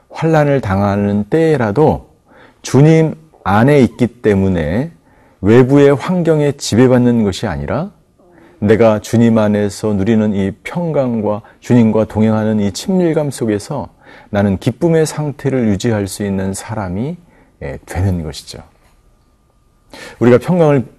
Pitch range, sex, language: 105-140 Hz, male, Korean